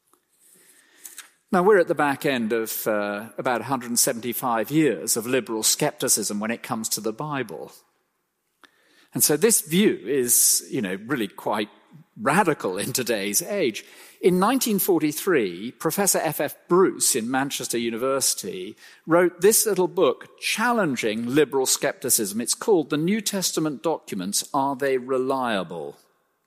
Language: English